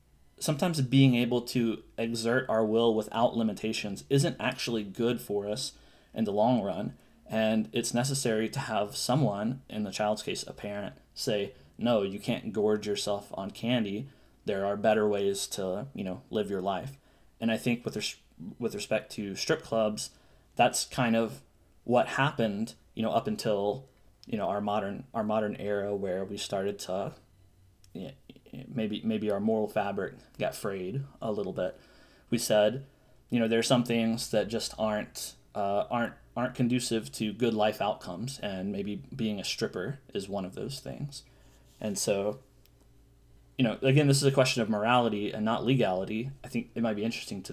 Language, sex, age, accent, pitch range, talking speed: English, male, 20-39, American, 100-125 Hz, 175 wpm